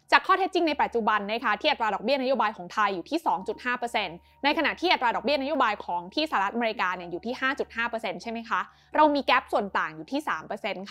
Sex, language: female, Thai